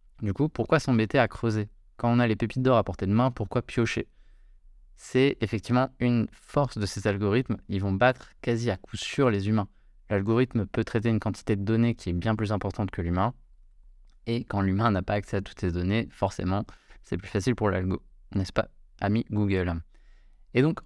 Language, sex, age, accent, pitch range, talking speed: French, male, 20-39, French, 95-115 Hz, 200 wpm